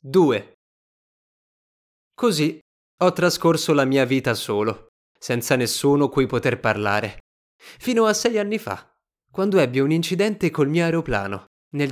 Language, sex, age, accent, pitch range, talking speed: Italian, male, 20-39, native, 115-165 Hz, 130 wpm